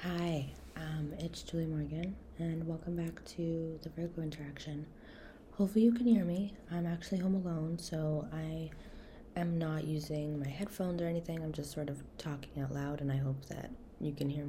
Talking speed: 180 wpm